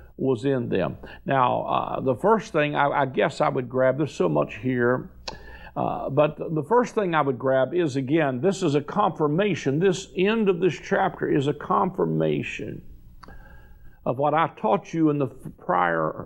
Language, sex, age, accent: English, male, 50-69, American